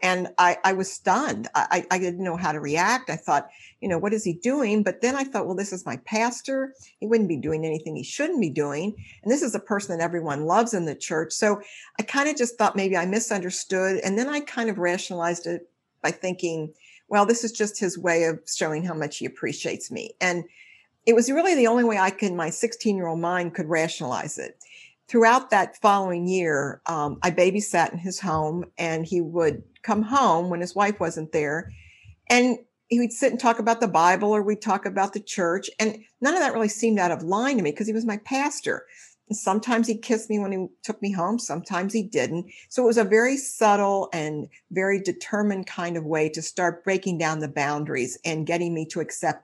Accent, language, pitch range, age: American, English, 165-220 Hz, 50-69